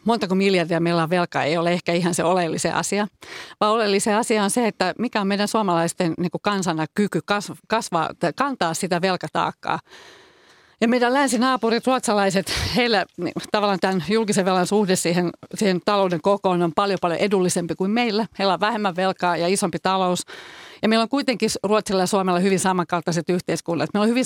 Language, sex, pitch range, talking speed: Finnish, female, 175-210 Hz, 170 wpm